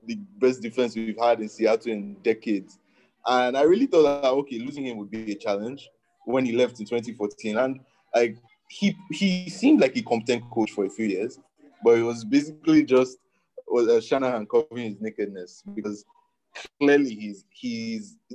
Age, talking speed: 20-39, 175 wpm